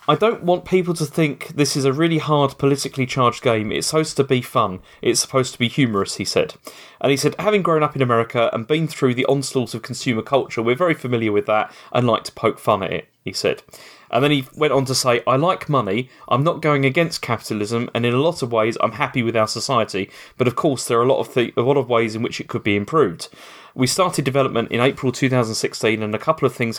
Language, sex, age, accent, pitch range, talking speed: English, male, 30-49, British, 115-140 Hz, 250 wpm